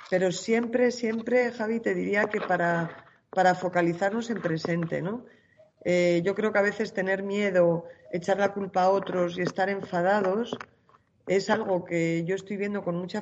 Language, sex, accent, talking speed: Spanish, female, Spanish, 170 wpm